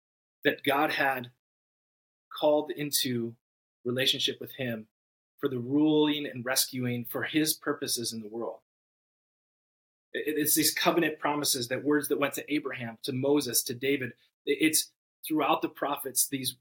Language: English